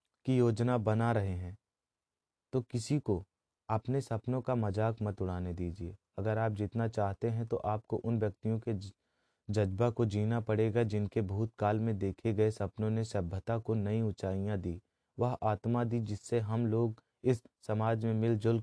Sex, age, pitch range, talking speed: male, 30-49, 100-115 Hz, 165 wpm